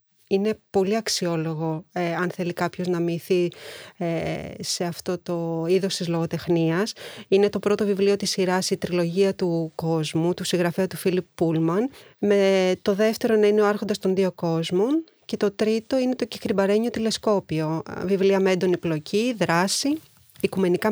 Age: 30-49